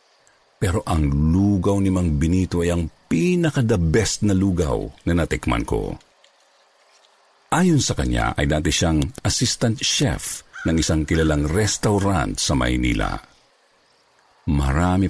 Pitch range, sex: 75-110 Hz, male